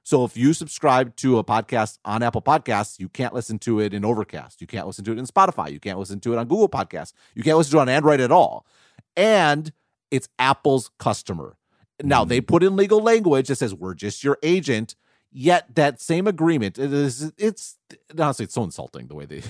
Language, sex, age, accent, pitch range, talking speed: English, male, 40-59, American, 115-155 Hz, 210 wpm